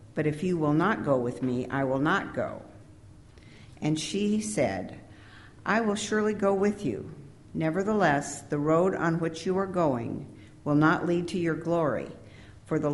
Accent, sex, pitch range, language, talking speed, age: American, female, 130-170 Hz, English, 170 wpm, 60-79